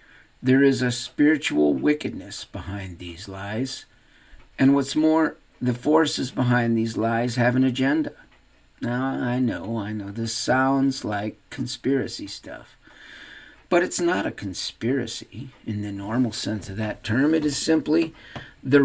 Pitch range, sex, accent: 105-135 Hz, male, American